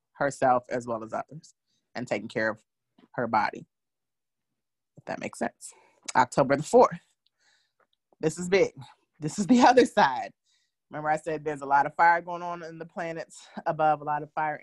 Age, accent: 30-49, American